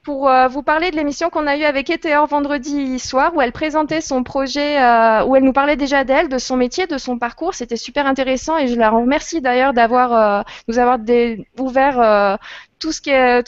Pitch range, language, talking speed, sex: 230-280 Hz, French, 200 wpm, female